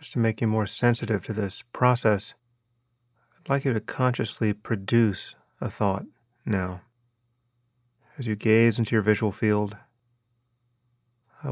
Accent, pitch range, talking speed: American, 110-120 Hz, 135 wpm